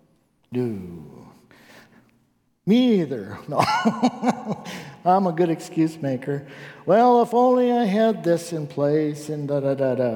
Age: 60-79